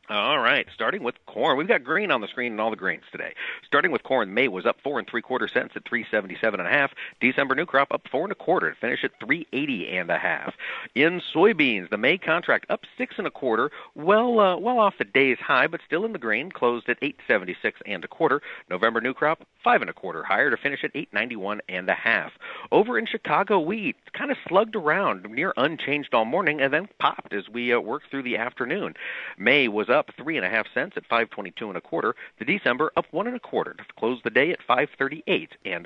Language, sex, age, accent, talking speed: English, male, 40-59, American, 250 wpm